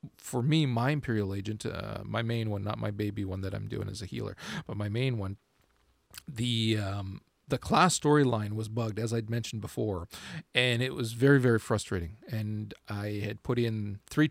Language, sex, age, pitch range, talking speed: English, male, 40-59, 110-130 Hz, 195 wpm